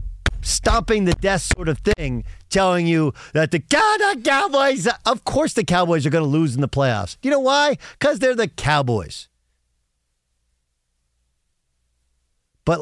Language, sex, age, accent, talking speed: English, male, 50-69, American, 150 wpm